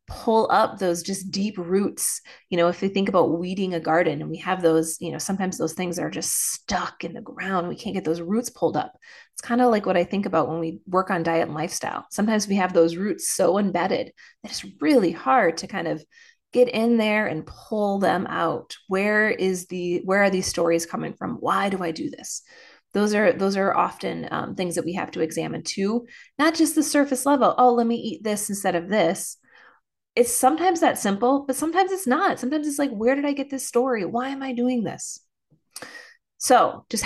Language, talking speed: English, 220 wpm